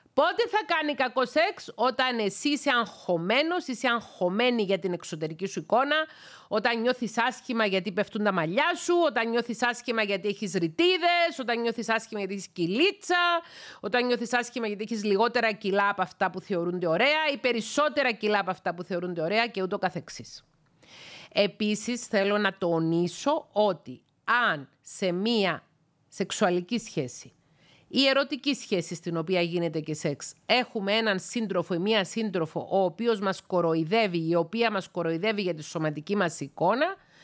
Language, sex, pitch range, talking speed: Greek, female, 185-250 Hz, 150 wpm